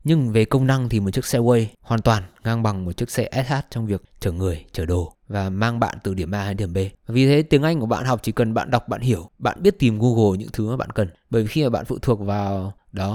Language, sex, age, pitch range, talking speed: Vietnamese, male, 20-39, 100-125 Hz, 290 wpm